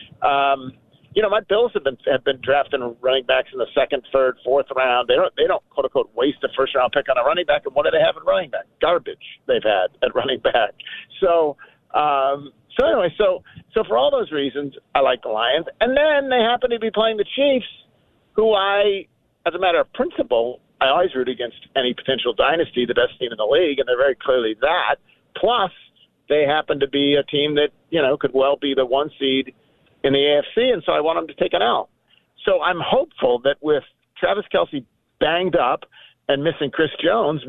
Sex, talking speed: male, 215 wpm